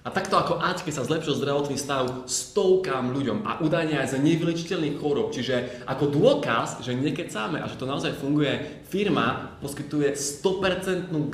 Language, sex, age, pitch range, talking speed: Slovak, male, 20-39, 135-175 Hz, 165 wpm